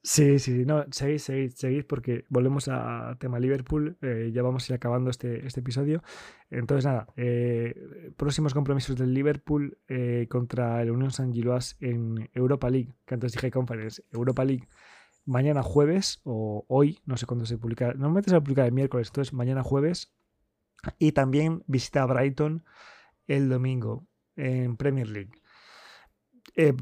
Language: Spanish